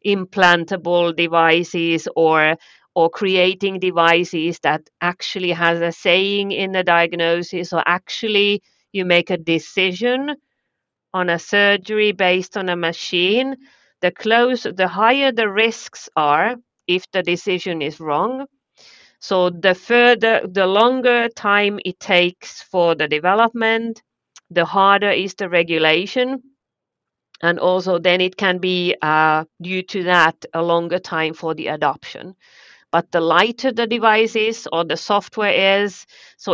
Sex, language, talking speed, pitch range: female, English, 135 wpm, 170-205 Hz